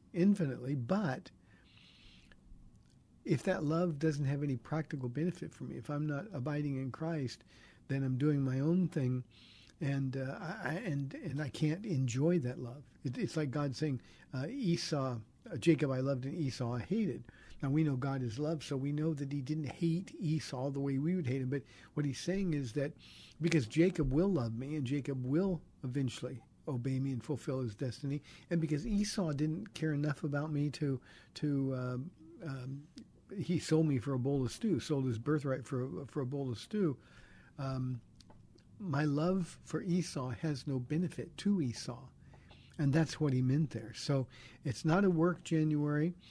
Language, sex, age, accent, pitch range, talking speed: English, male, 50-69, American, 130-160 Hz, 180 wpm